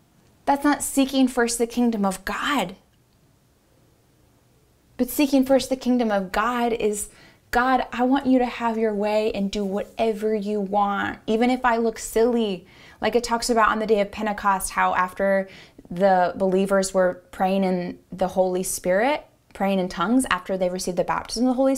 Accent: American